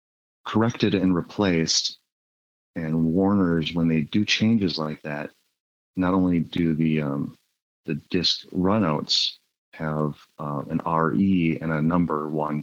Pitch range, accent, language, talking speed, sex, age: 75-85 Hz, American, English, 130 wpm, male, 30-49